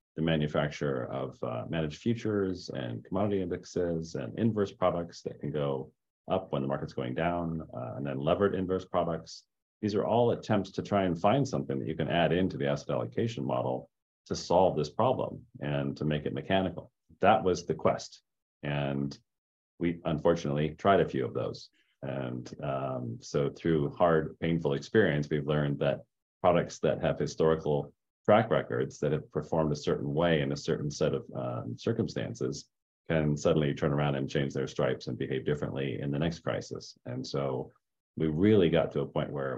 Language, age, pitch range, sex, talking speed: English, 40-59, 70-85 Hz, male, 180 wpm